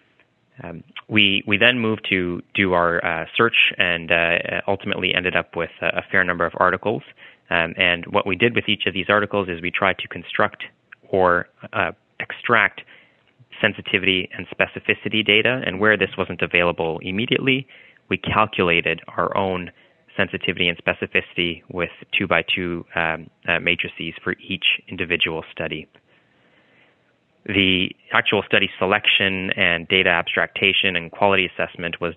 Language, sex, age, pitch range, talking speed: English, male, 20-39, 85-100 Hz, 145 wpm